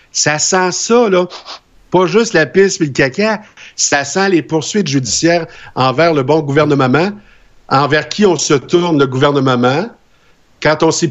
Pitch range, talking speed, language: 135-170 Hz, 165 wpm, French